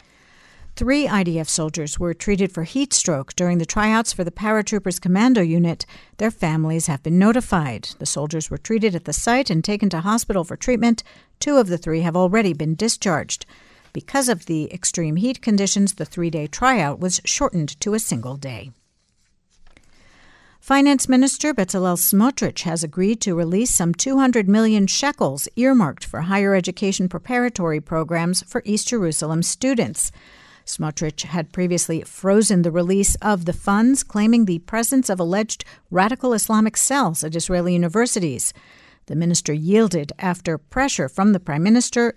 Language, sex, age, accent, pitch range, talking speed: English, female, 60-79, American, 165-225 Hz, 155 wpm